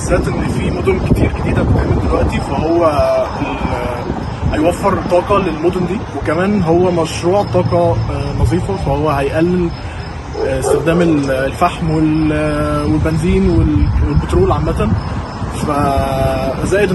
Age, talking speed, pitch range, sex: 20-39, 90 wpm, 105-165 Hz, male